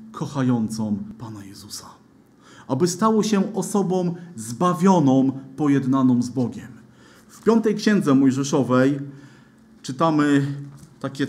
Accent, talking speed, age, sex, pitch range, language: native, 90 wpm, 40-59, male, 135-185 Hz, Polish